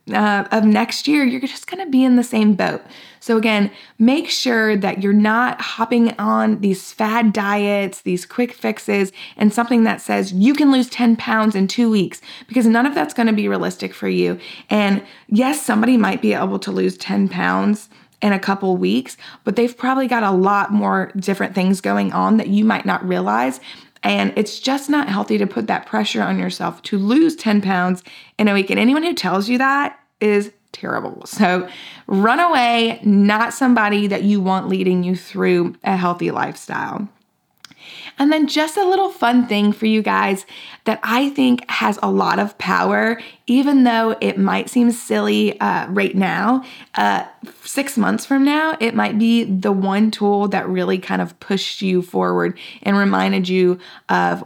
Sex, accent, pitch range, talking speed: female, American, 185-240 Hz, 185 wpm